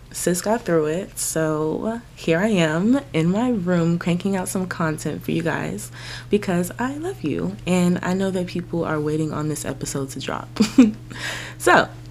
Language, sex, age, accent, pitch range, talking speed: English, female, 20-39, American, 150-190 Hz, 175 wpm